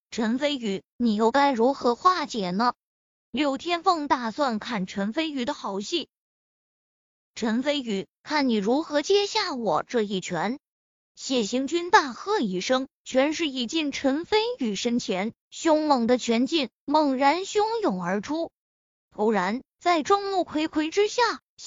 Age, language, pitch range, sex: 20-39, Chinese, 240-360 Hz, female